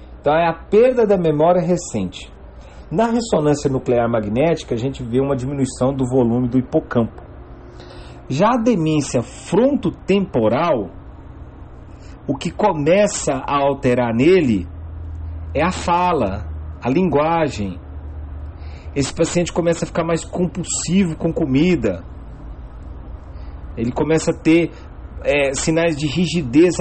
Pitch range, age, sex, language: 100-165 Hz, 40-59, male, Portuguese